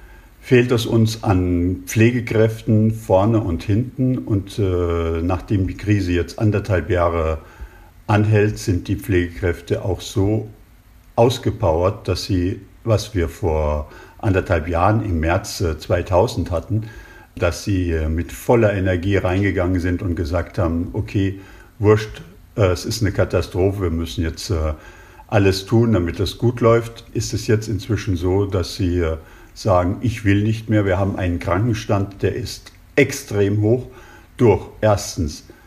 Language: German